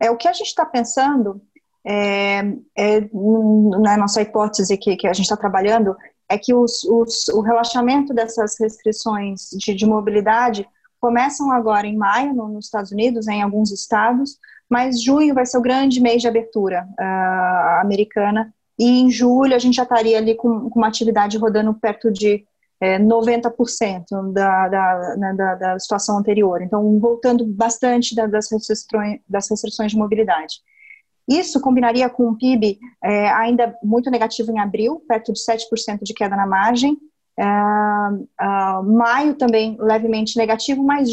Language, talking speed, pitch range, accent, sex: Portuguese, 140 wpm, 210-245 Hz, Brazilian, female